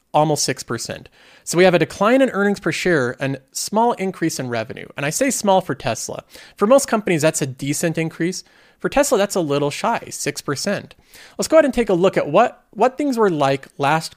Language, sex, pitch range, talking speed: English, male, 140-185 Hz, 210 wpm